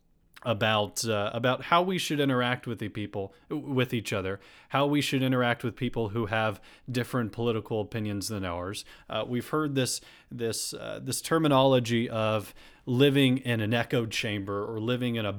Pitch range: 110-145 Hz